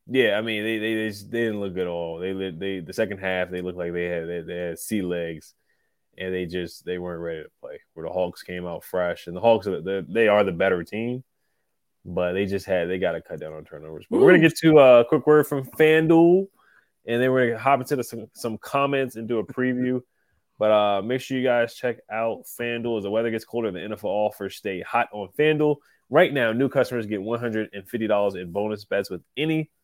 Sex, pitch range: male, 95-130 Hz